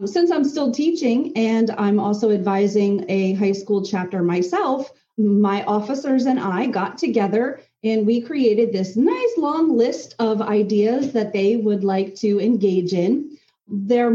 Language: English